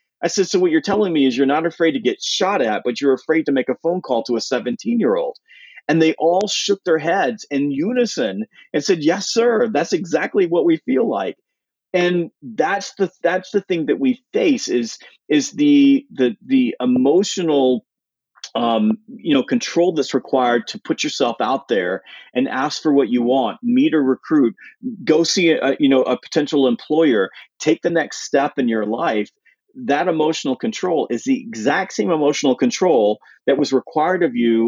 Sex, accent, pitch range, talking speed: male, American, 125-190 Hz, 190 wpm